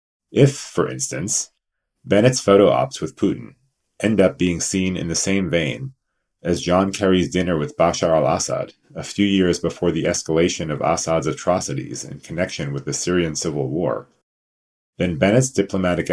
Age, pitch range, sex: 30-49, 80-100 Hz, male